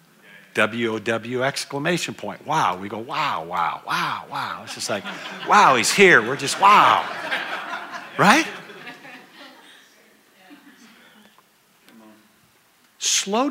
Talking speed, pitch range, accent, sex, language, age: 95 wpm, 130-200 Hz, American, male, English, 50-69